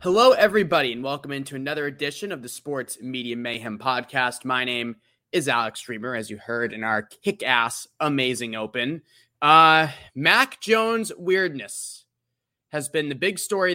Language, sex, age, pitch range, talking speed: English, male, 20-39, 120-165 Hz, 155 wpm